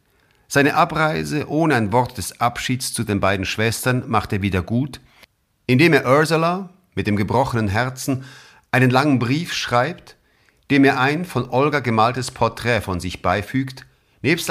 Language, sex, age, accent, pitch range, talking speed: German, male, 50-69, German, 105-135 Hz, 155 wpm